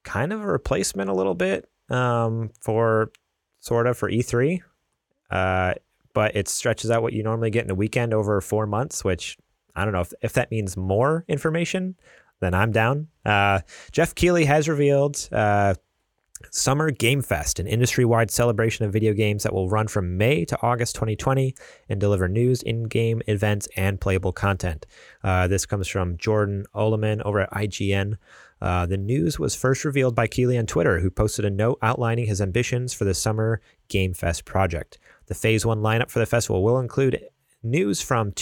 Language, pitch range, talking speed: English, 100-120 Hz, 180 wpm